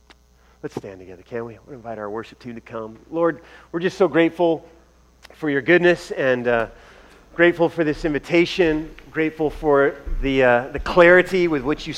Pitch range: 125-175 Hz